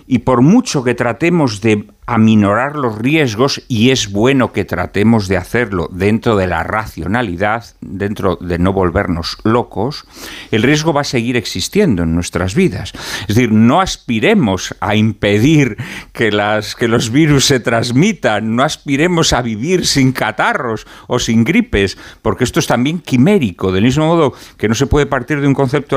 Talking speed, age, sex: 165 wpm, 50-69, male